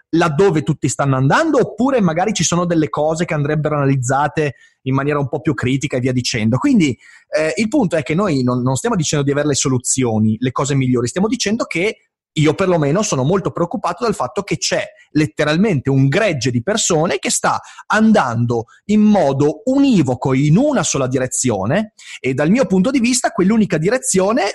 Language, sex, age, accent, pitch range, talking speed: Italian, male, 30-49, native, 135-220 Hz, 185 wpm